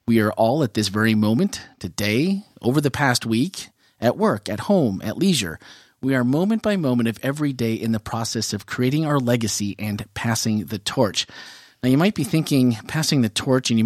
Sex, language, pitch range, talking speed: male, English, 110-150 Hz, 205 wpm